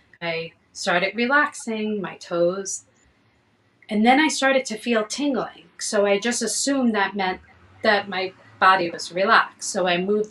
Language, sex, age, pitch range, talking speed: English, female, 30-49, 180-225 Hz, 150 wpm